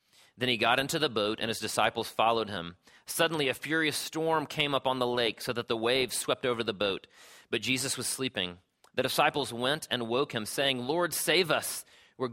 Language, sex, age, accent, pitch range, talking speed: English, male, 30-49, American, 105-130 Hz, 210 wpm